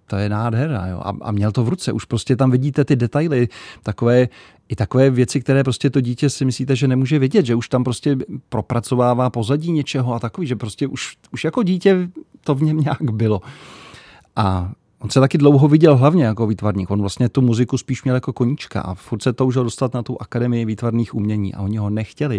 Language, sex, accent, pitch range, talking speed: Czech, male, native, 110-130 Hz, 215 wpm